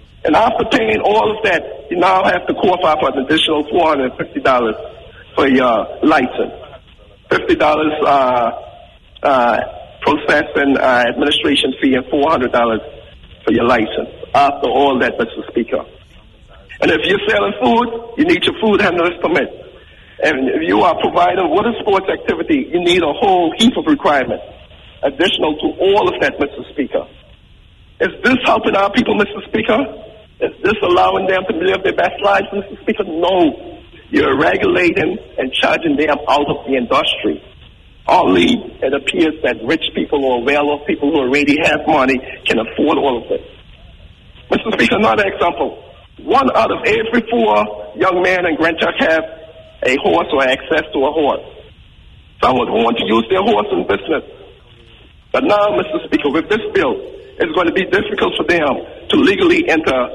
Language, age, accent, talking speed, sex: English, 50-69, American, 165 wpm, male